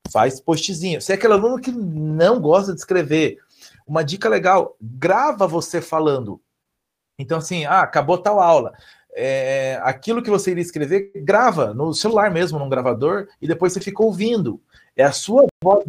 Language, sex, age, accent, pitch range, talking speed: Portuguese, male, 40-59, Brazilian, 170-220 Hz, 160 wpm